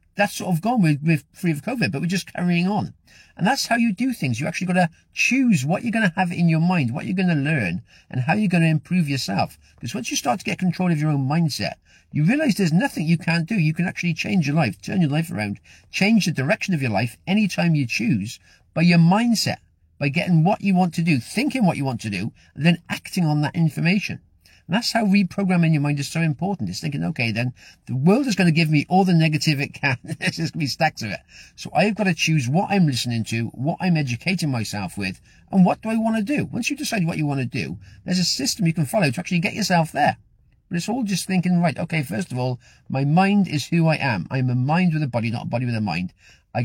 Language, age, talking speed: English, 40-59, 260 wpm